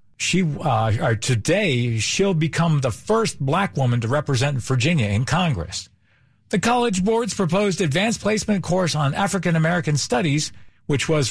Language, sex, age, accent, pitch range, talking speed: English, male, 50-69, American, 125-170 Hz, 145 wpm